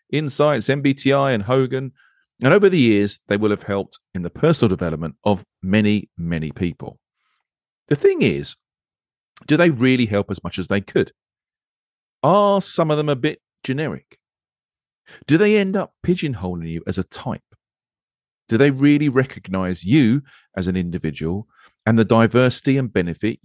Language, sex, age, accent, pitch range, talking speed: English, male, 40-59, British, 95-145 Hz, 155 wpm